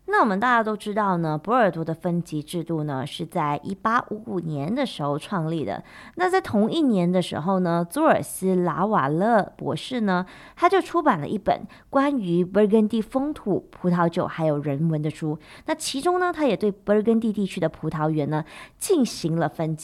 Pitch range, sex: 165-240 Hz, female